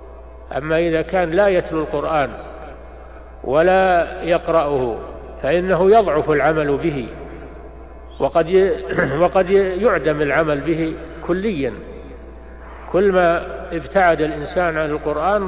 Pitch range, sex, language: 130-175 Hz, male, Arabic